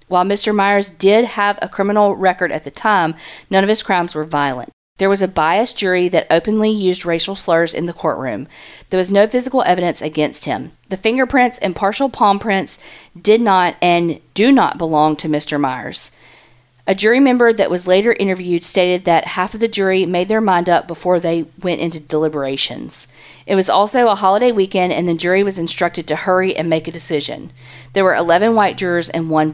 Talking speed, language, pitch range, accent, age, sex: 200 wpm, English, 165-200 Hz, American, 40-59, female